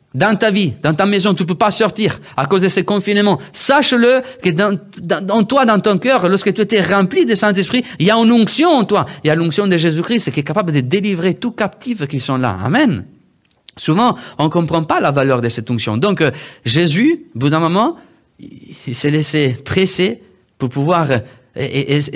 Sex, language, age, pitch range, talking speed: male, French, 30-49, 130-190 Hz, 210 wpm